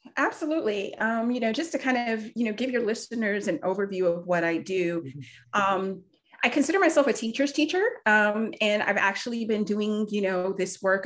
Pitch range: 180-230 Hz